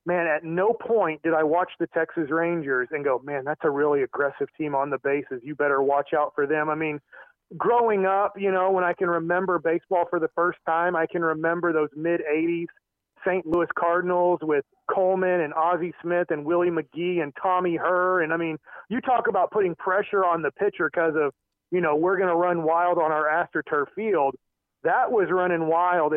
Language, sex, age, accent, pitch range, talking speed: English, male, 40-59, American, 165-210 Hz, 210 wpm